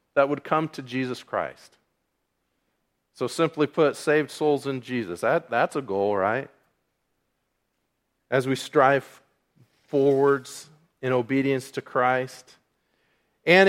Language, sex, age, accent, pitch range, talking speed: English, male, 40-59, American, 130-165 Hz, 120 wpm